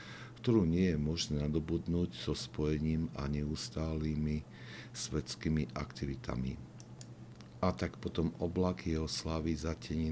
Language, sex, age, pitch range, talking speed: Slovak, male, 60-79, 75-85 Hz, 105 wpm